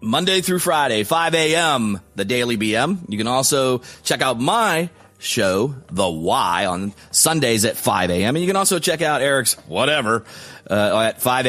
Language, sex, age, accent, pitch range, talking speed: English, male, 30-49, American, 105-160 Hz, 170 wpm